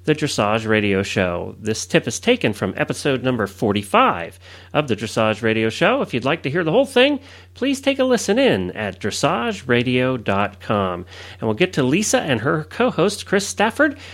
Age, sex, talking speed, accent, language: 40-59, male, 180 wpm, American, English